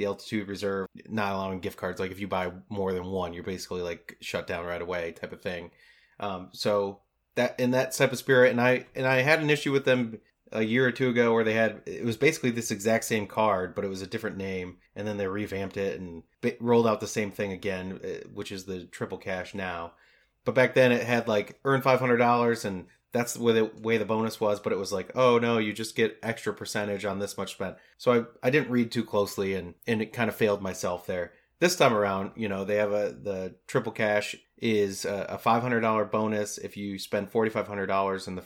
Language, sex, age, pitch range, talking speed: English, male, 30-49, 95-115 Hz, 235 wpm